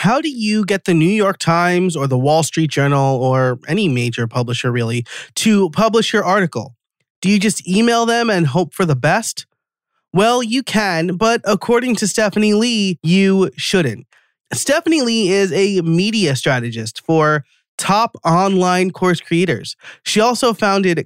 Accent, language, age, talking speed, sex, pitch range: American, English, 30-49, 160 wpm, male, 145-205 Hz